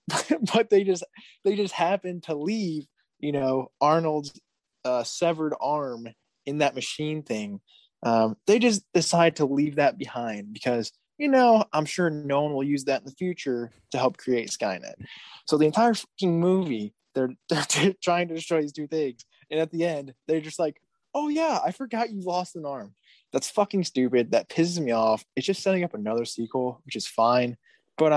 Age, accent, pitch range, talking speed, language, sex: 20-39, American, 110-160 Hz, 185 wpm, English, male